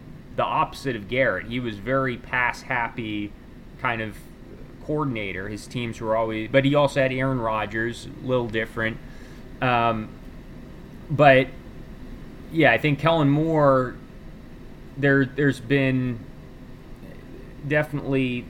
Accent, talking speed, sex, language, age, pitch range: American, 115 wpm, male, English, 30-49, 115-135 Hz